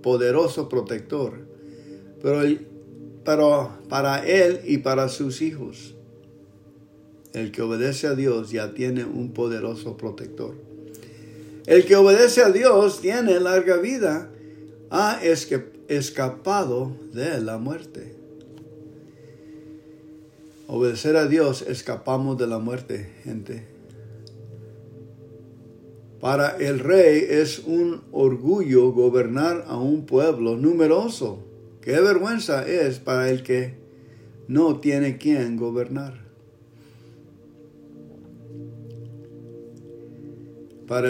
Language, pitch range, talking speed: English, 115-150 Hz, 90 wpm